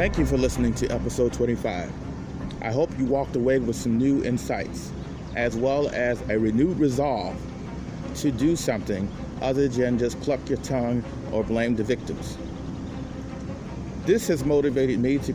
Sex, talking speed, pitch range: male, 155 wpm, 115-140 Hz